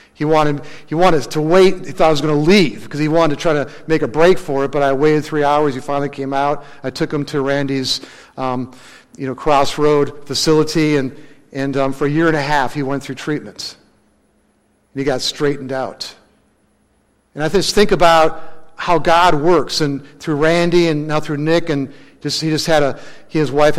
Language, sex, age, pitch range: English, male, 50-69, 140-160 Hz